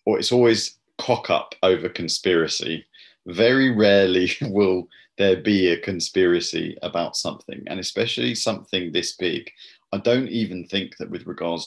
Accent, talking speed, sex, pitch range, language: British, 145 wpm, male, 85-100 Hz, English